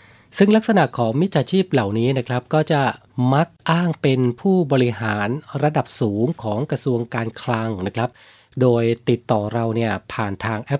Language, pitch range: Thai, 115-145 Hz